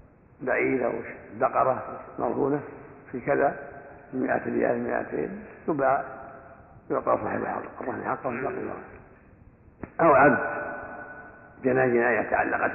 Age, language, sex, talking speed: 60-79, Arabic, male, 105 wpm